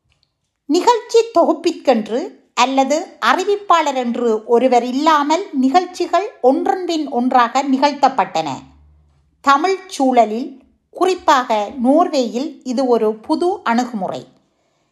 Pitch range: 240-335 Hz